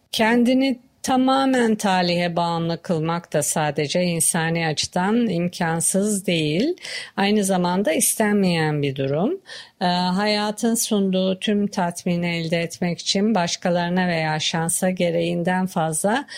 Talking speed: 105 wpm